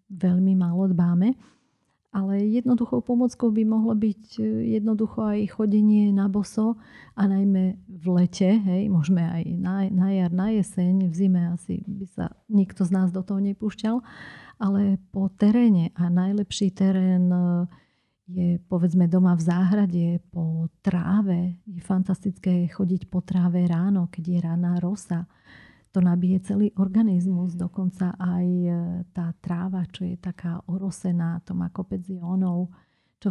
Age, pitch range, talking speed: 40-59, 180-200 Hz, 135 wpm